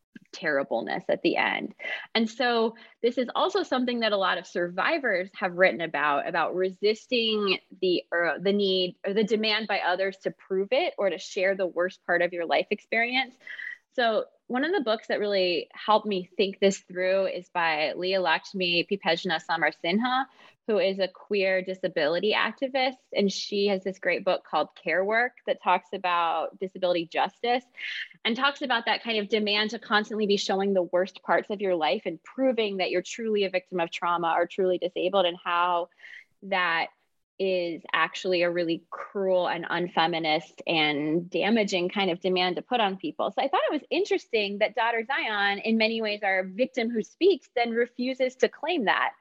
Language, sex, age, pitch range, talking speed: English, female, 20-39, 180-225 Hz, 180 wpm